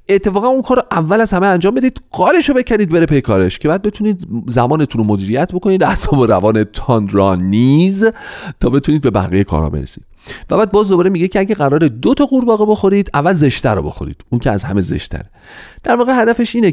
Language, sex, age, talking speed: Persian, male, 40-59, 210 wpm